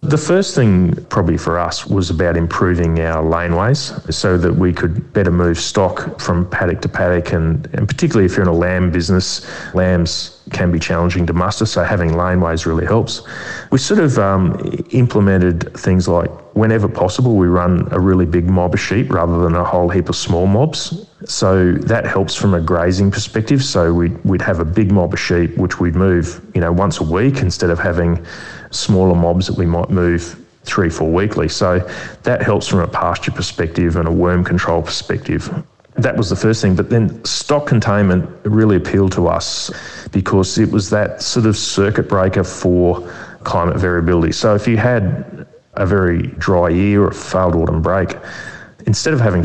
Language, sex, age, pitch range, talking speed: English, male, 30-49, 85-105 Hz, 190 wpm